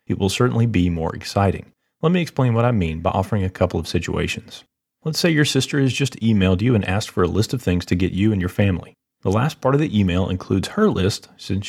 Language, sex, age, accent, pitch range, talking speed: English, male, 30-49, American, 95-125 Hz, 250 wpm